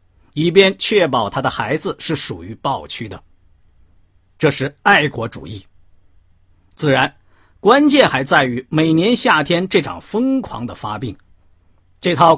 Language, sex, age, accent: Chinese, male, 50-69, native